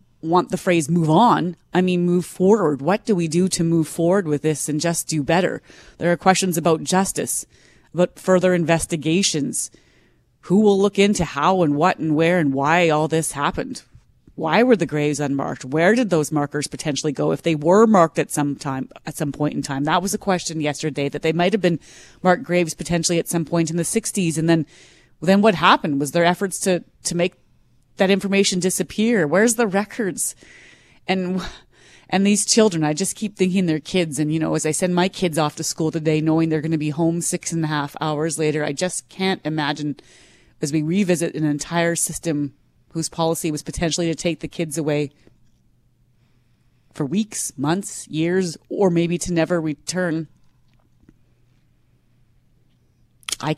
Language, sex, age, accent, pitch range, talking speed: English, female, 30-49, American, 155-185 Hz, 185 wpm